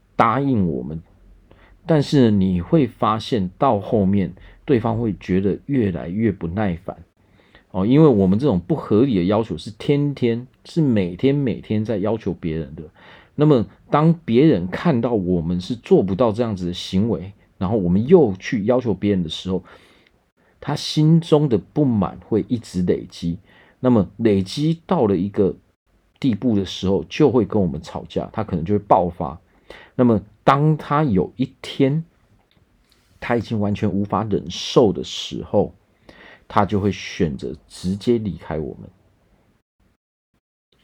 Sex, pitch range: male, 95-130 Hz